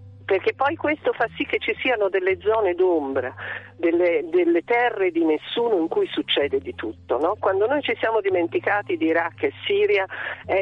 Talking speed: 180 wpm